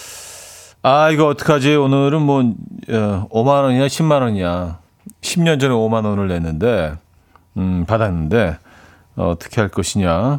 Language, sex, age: Korean, male, 40-59